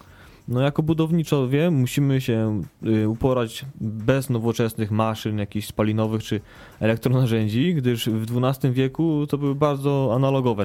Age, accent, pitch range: 20-39, native, 115-150 Hz